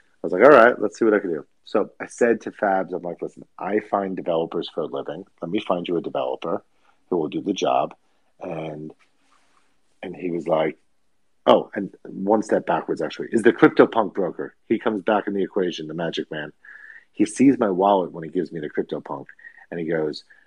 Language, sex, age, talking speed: English, male, 40-59, 220 wpm